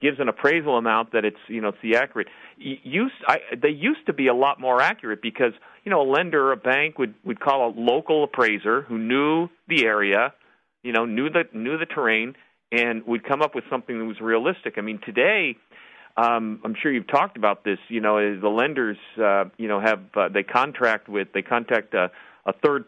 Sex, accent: male, American